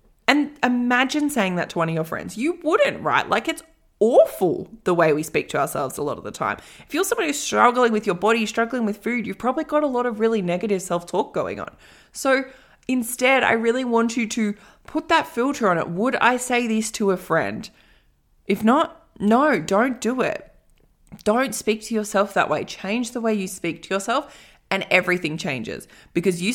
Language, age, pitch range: English, 20-39, 190-255 Hz